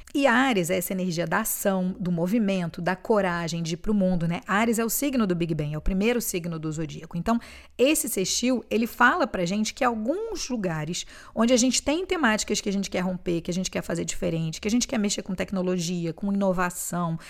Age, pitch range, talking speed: 40-59, 175-225 Hz, 225 wpm